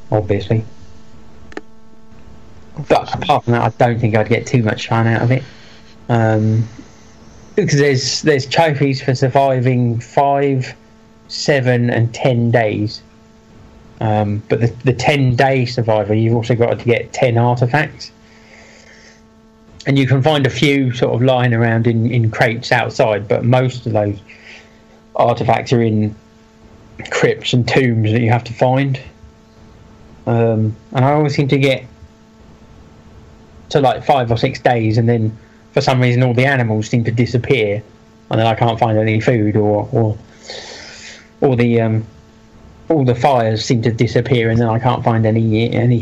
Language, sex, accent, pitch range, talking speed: English, male, British, 110-125 Hz, 155 wpm